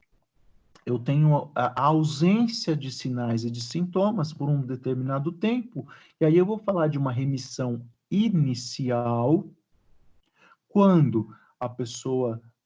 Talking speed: 120 wpm